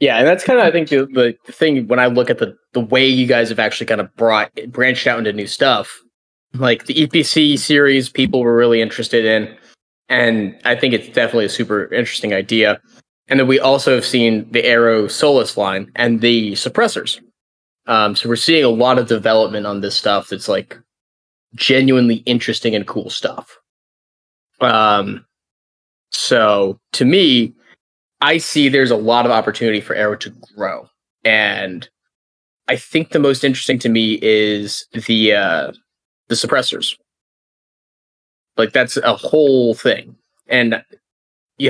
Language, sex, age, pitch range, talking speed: English, male, 20-39, 110-130 Hz, 160 wpm